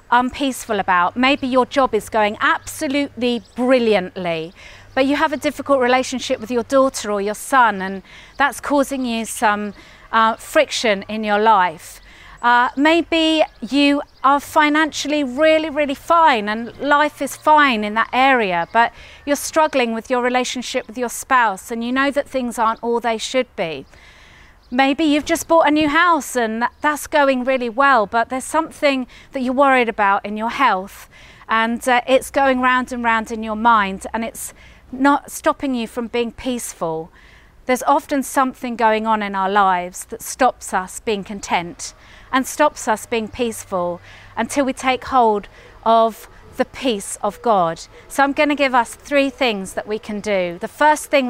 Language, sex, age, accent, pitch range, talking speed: English, female, 40-59, British, 220-275 Hz, 170 wpm